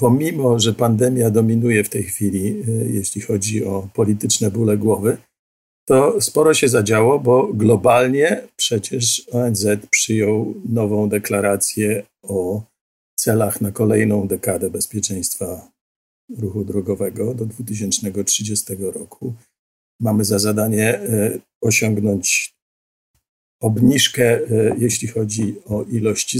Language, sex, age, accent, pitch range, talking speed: Polish, male, 50-69, native, 105-120 Hz, 100 wpm